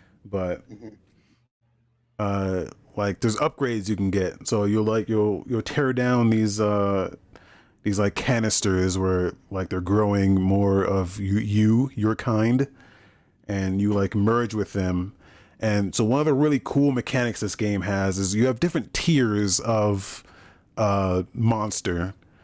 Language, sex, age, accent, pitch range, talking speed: English, male, 30-49, American, 100-125 Hz, 145 wpm